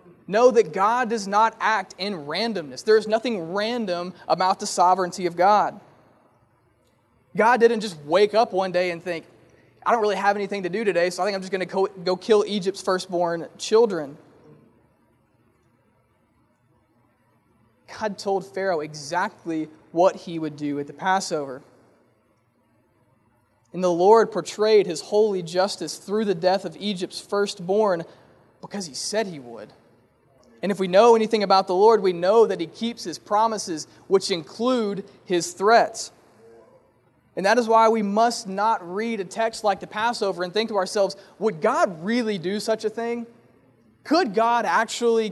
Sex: male